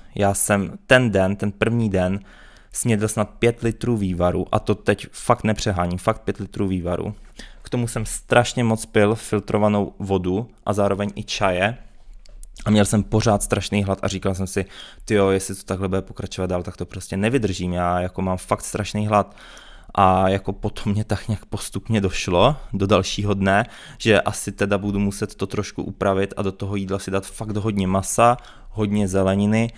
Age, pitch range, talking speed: 20-39, 95-110 Hz, 180 wpm